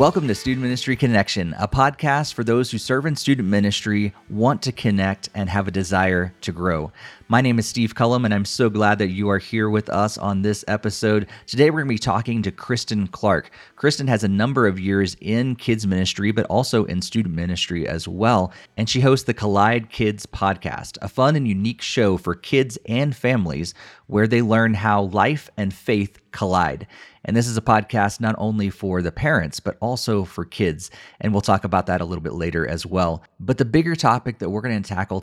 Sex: male